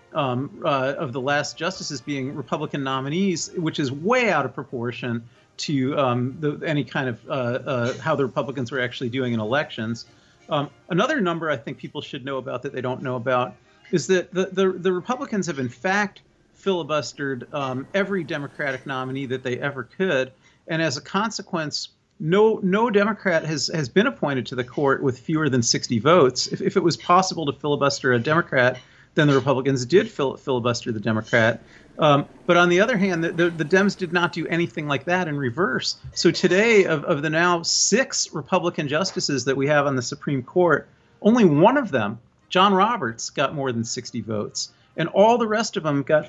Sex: male